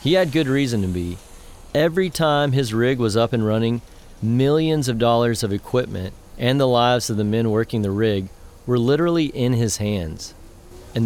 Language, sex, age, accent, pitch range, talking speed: English, male, 30-49, American, 100-135 Hz, 185 wpm